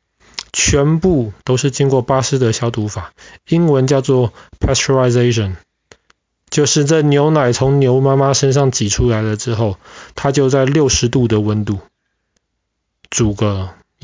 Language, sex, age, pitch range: Chinese, male, 20-39, 110-135 Hz